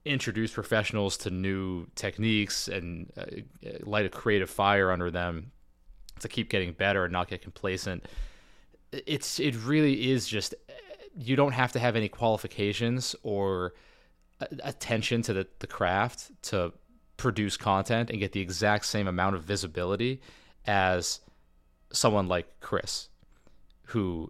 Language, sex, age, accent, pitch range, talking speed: English, male, 30-49, American, 90-110 Hz, 135 wpm